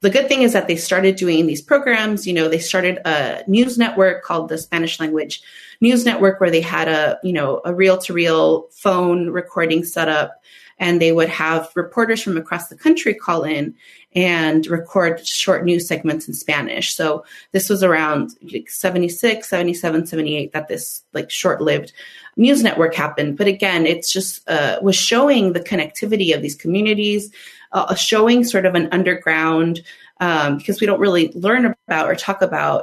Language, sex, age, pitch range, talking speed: English, female, 30-49, 160-195 Hz, 175 wpm